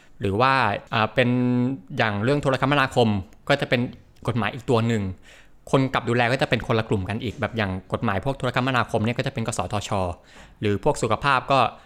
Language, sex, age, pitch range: Thai, male, 20-39, 105-130 Hz